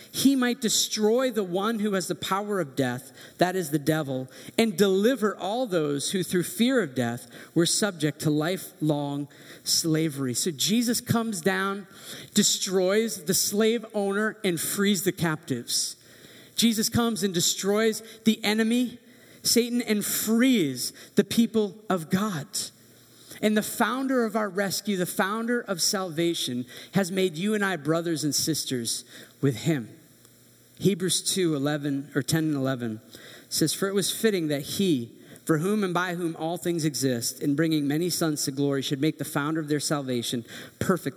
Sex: male